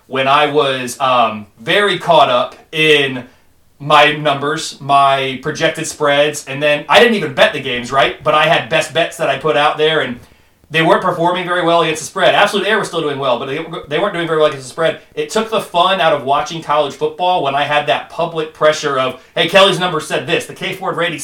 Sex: male